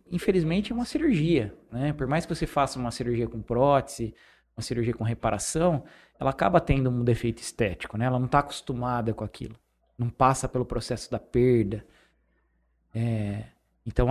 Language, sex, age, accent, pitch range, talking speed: Portuguese, male, 20-39, Brazilian, 115-145 Hz, 165 wpm